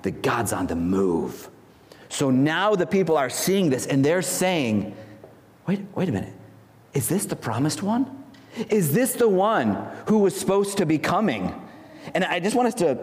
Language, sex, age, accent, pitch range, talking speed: English, male, 40-59, American, 135-190 Hz, 185 wpm